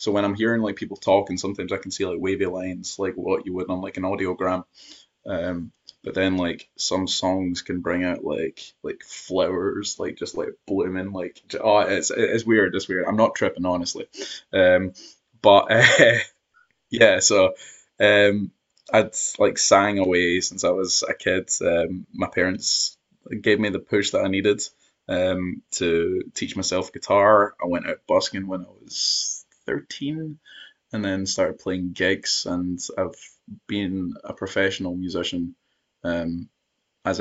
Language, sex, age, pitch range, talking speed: English, male, 20-39, 90-95 Hz, 160 wpm